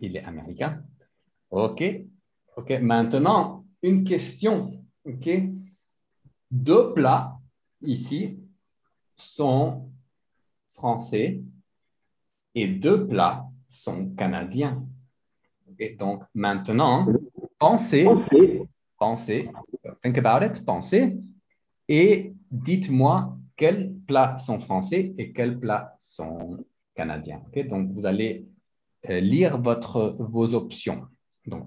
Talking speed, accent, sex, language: 90 wpm, French, male, English